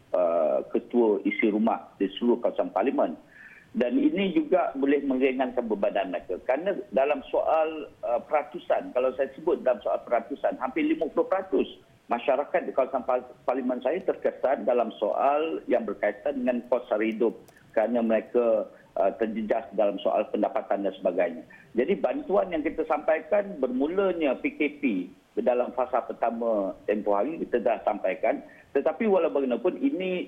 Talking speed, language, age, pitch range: 130 wpm, Malay, 50-69, 115-170 Hz